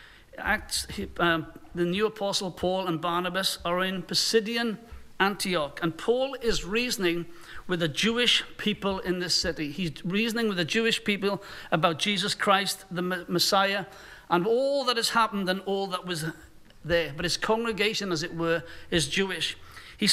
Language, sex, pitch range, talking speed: English, male, 180-220 Hz, 160 wpm